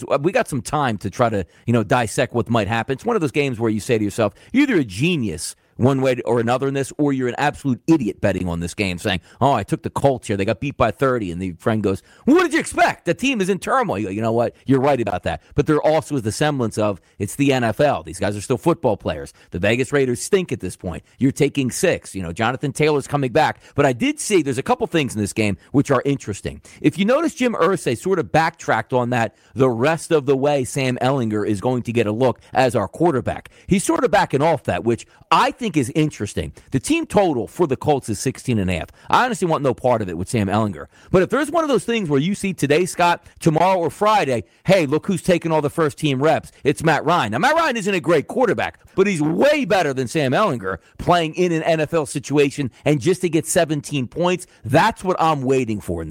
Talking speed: 250 wpm